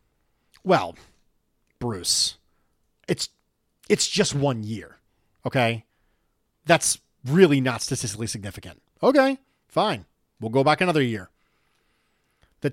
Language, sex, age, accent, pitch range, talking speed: English, male, 40-59, American, 115-185 Hz, 100 wpm